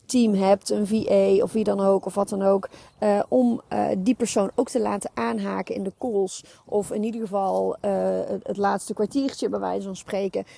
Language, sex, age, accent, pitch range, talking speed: Dutch, female, 30-49, Dutch, 195-245 Hz, 210 wpm